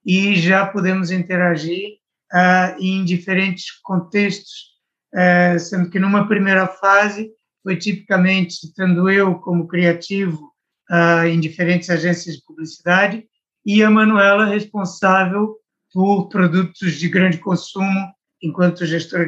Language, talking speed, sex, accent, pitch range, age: Portuguese, 115 wpm, male, Brazilian, 175-200 Hz, 60-79